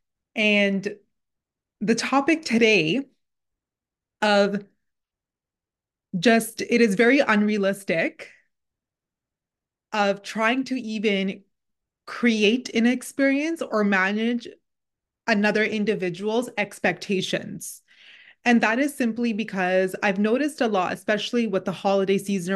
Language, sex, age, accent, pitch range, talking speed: English, female, 20-39, American, 195-235 Hz, 95 wpm